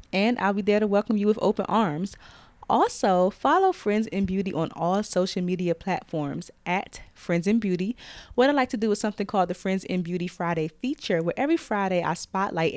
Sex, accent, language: female, American, English